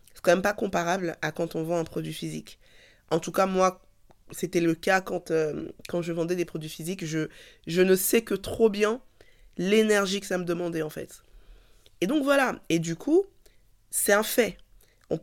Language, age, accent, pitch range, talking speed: French, 20-39, French, 170-200 Hz, 200 wpm